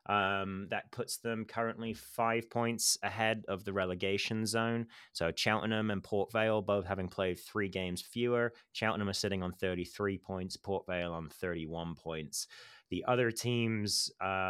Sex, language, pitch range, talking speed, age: male, English, 85-110 Hz, 155 wpm, 20-39